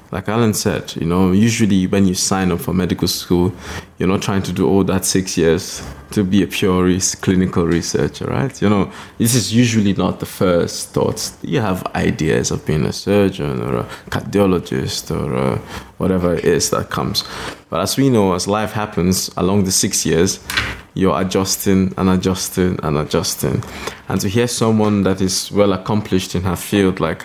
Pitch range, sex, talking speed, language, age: 90-105 Hz, male, 185 wpm, Hungarian, 20-39